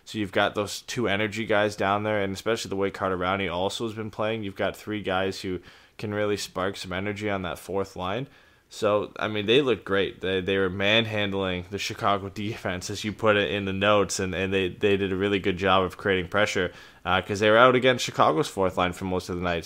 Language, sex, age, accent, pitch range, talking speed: English, male, 20-39, American, 95-110 Hz, 240 wpm